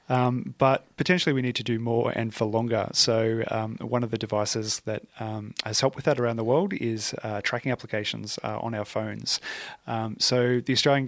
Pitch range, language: 110-125 Hz, English